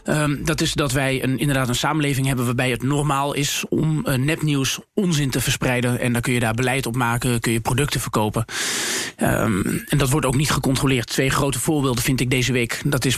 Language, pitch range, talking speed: Dutch, 125-150 Hz, 200 wpm